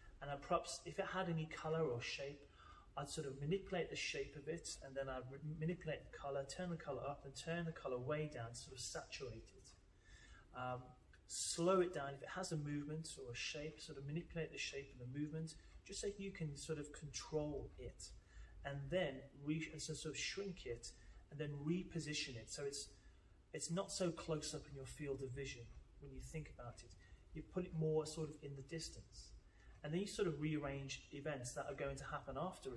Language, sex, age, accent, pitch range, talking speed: English, male, 30-49, British, 130-160 Hz, 210 wpm